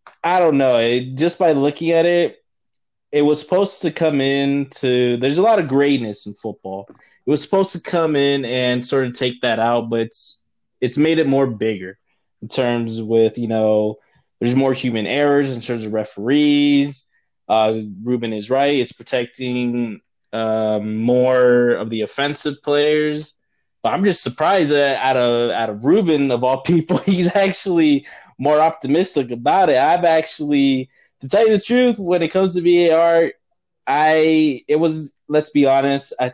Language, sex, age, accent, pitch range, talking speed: English, male, 20-39, American, 120-150 Hz, 175 wpm